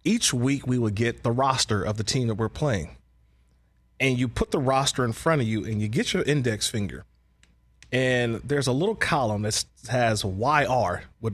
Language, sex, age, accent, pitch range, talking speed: English, male, 30-49, American, 105-145 Hz, 195 wpm